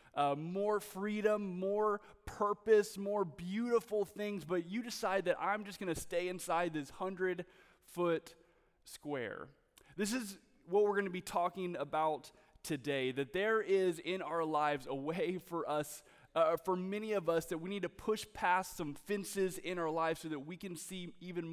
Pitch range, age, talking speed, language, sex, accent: 165-200 Hz, 20-39, 175 wpm, English, male, American